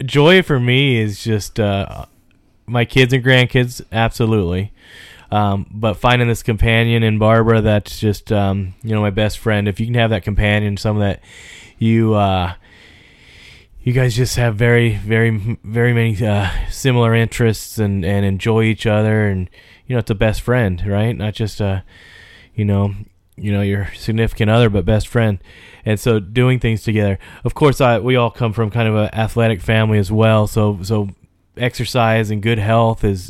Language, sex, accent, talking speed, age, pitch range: English, male, American, 180 wpm, 20-39, 100-115 Hz